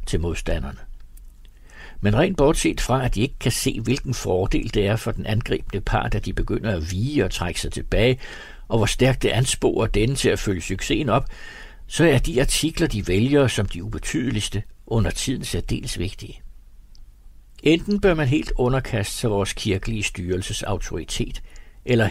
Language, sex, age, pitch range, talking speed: Danish, male, 60-79, 100-130 Hz, 170 wpm